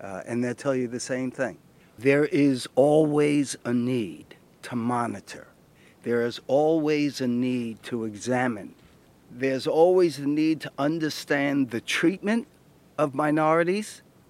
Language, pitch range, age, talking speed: English, 125-160 Hz, 50-69, 135 wpm